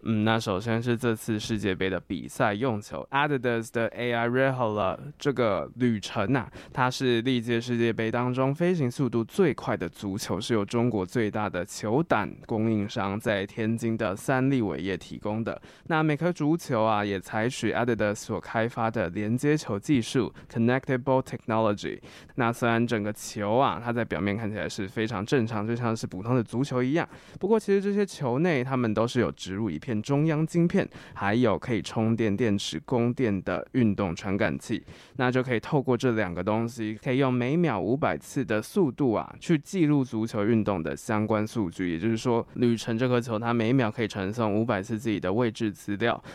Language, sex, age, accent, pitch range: Chinese, male, 20-39, native, 105-130 Hz